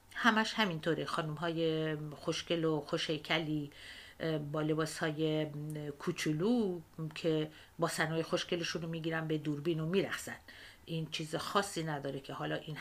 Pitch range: 150-170 Hz